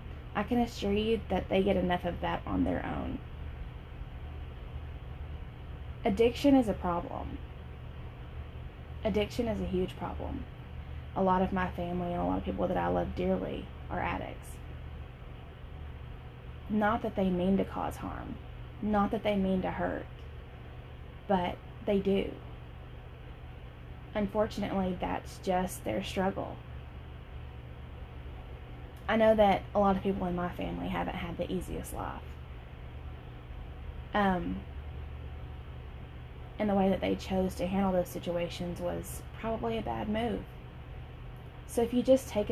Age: 20-39